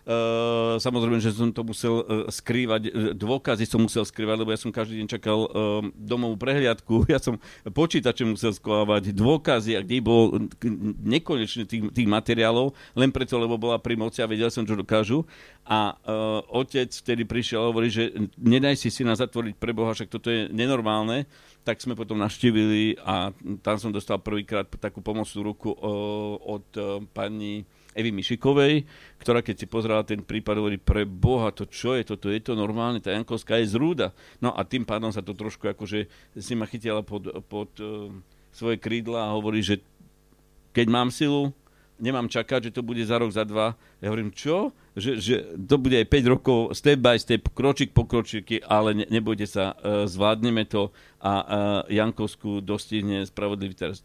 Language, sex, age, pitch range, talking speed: Slovak, male, 50-69, 105-120 Hz, 180 wpm